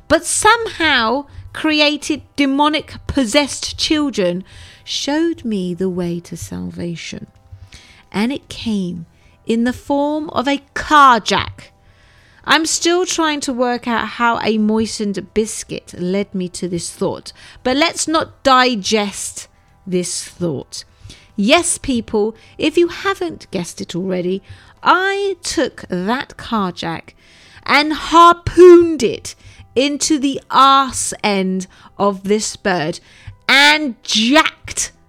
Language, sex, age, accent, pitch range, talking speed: English, female, 40-59, British, 180-285 Hz, 115 wpm